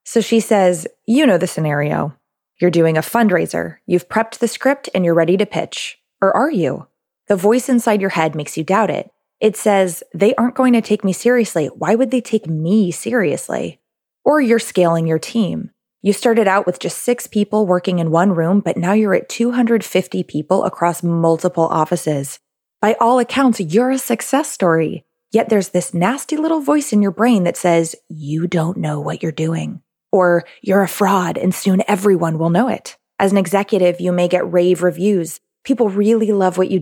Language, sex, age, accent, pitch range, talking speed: English, female, 20-39, American, 175-225 Hz, 195 wpm